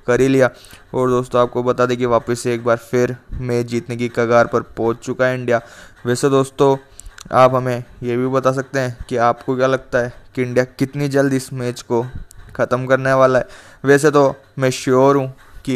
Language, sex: Hindi, male